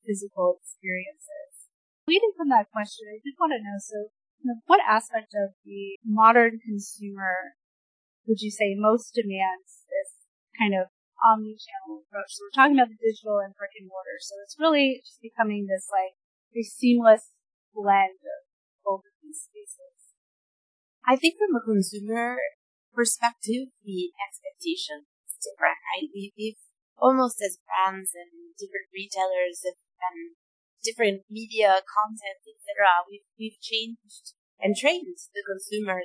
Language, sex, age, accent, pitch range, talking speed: English, female, 30-49, American, 185-235 Hz, 145 wpm